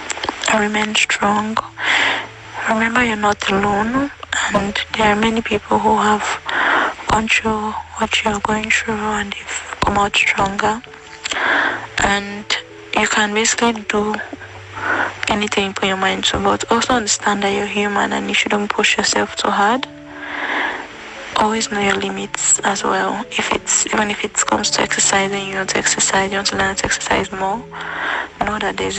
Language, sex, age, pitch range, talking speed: English, female, 20-39, 195-220 Hz, 155 wpm